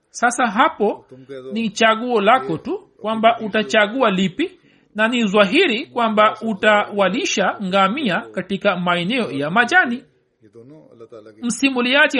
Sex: male